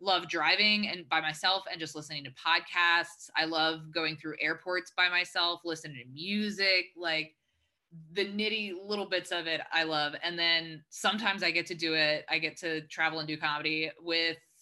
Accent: American